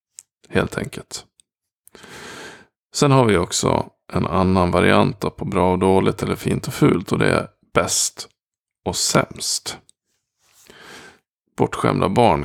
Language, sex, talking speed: Swedish, male, 120 wpm